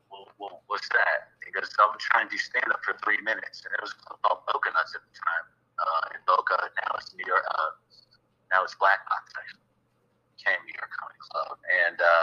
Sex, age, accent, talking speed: male, 50-69, American, 200 wpm